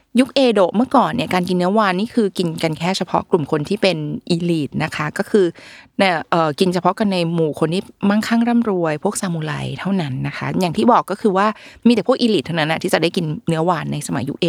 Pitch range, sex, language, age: 165-220 Hz, female, Thai, 20-39